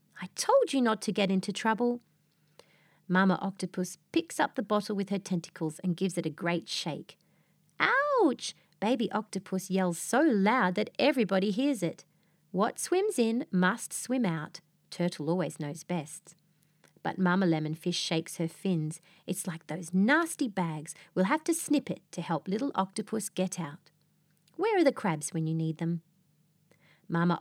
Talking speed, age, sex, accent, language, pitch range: 165 wpm, 40-59, female, Australian, English, 165-210 Hz